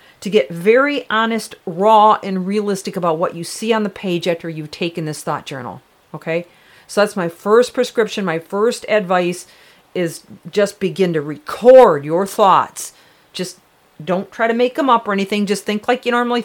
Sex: female